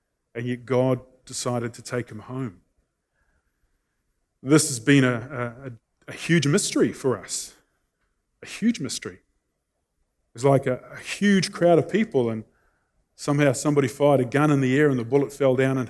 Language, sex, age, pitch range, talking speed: English, male, 20-39, 115-140 Hz, 170 wpm